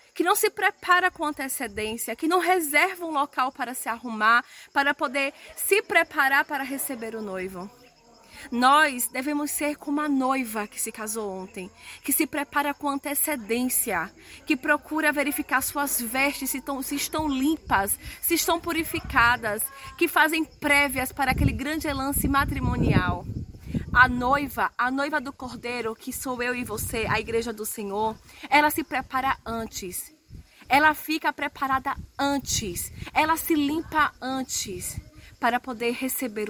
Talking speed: 145 wpm